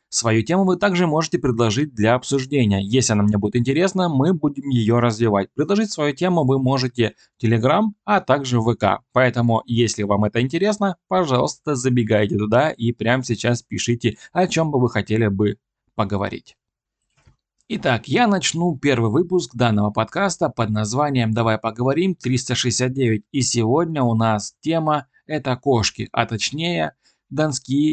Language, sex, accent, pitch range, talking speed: Russian, male, native, 110-140 Hz, 150 wpm